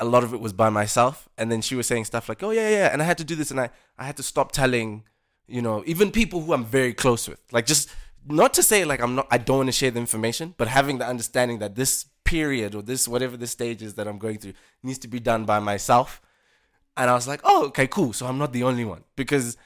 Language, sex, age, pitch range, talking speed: English, male, 20-39, 110-145 Hz, 280 wpm